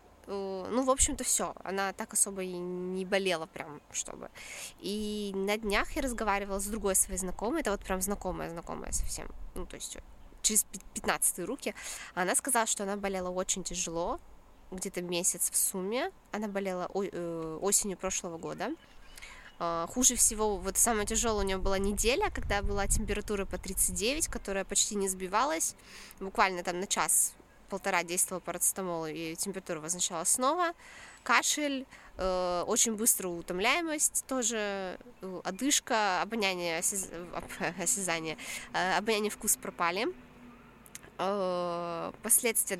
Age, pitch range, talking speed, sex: 20-39, 180-220 Hz, 130 wpm, female